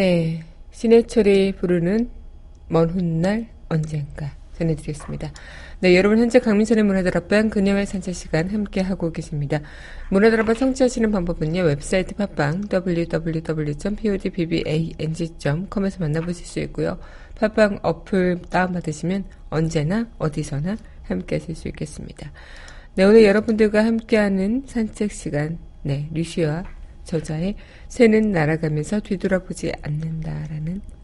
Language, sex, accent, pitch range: Korean, female, native, 165-210 Hz